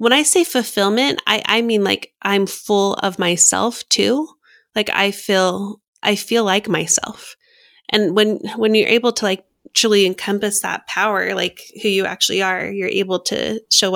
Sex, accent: female, American